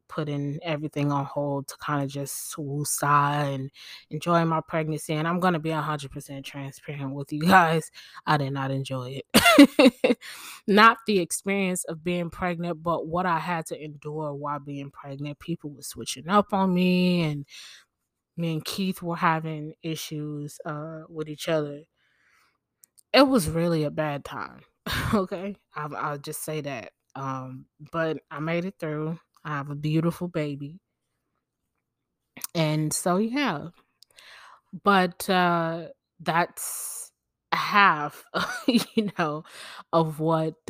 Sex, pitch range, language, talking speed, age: female, 145-170 Hz, English, 140 wpm, 20-39